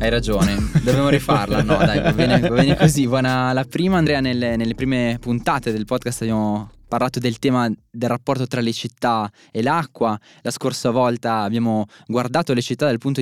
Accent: native